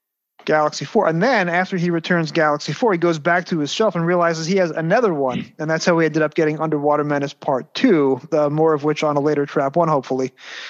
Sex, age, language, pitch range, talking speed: male, 30-49, English, 150-180 Hz, 240 wpm